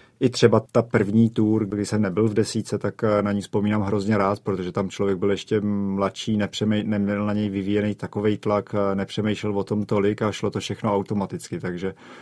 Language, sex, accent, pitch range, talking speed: Czech, male, native, 100-105 Hz, 190 wpm